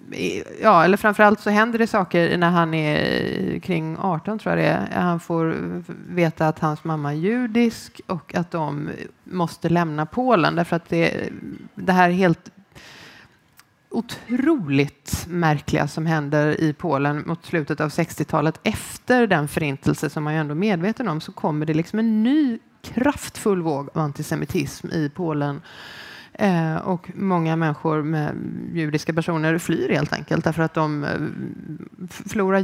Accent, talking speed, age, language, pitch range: native, 155 wpm, 30-49, Swedish, 160-200 Hz